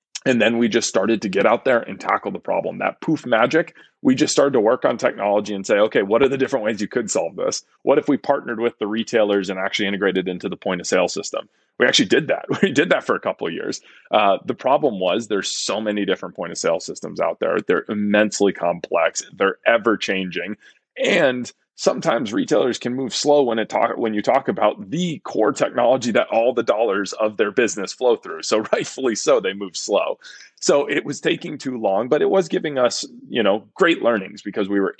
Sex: male